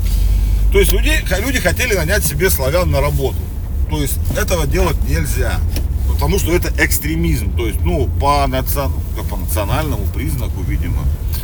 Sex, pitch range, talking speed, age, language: male, 75-105 Hz, 140 wpm, 40-59, Russian